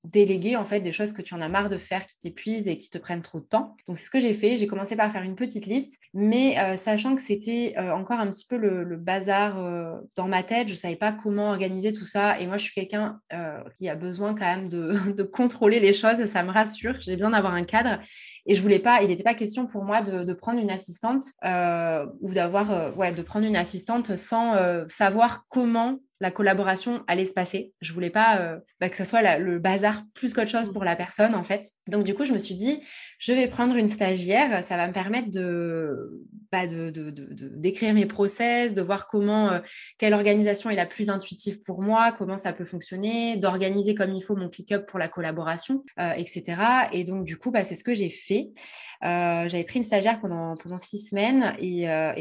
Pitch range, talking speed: 180-220 Hz, 240 wpm